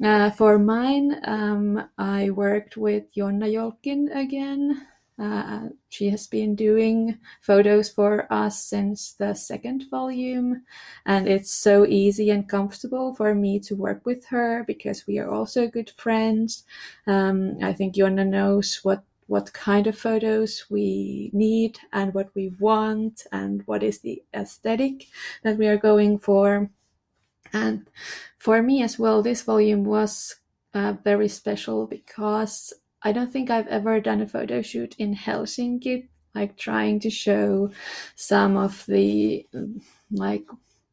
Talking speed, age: 140 wpm, 20-39